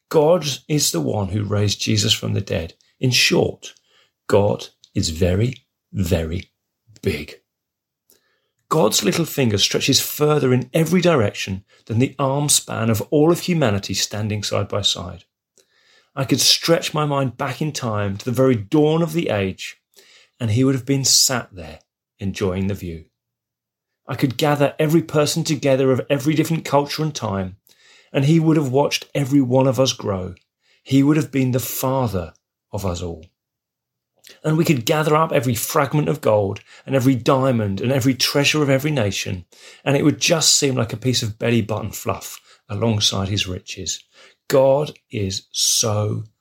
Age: 30-49